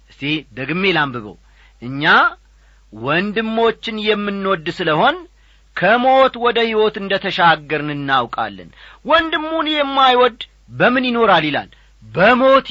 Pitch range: 150-230 Hz